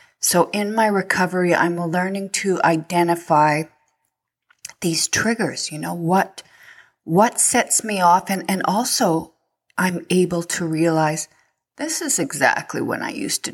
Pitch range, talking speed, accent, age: 155-220 Hz, 135 wpm, American, 30-49